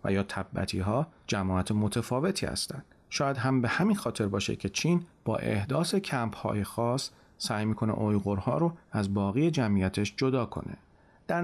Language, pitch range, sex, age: Persian, 105-145 Hz, male, 40-59